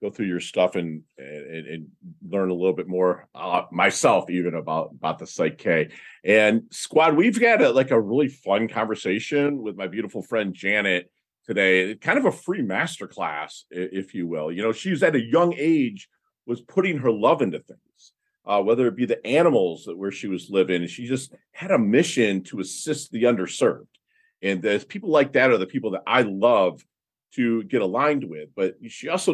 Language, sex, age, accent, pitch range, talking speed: English, male, 40-59, American, 95-135 Hz, 195 wpm